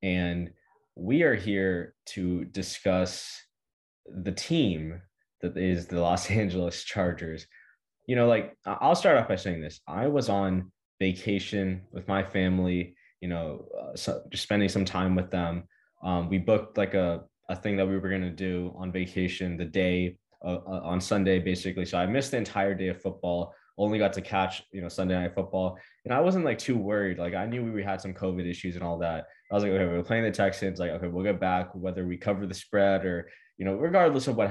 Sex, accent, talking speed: male, American, 205 wpm